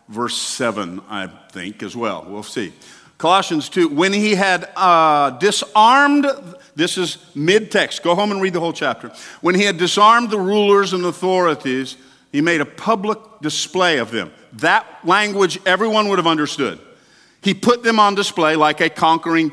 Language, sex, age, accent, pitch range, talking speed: English, male, 50-69, American, 145-195 Hz, 170 wpm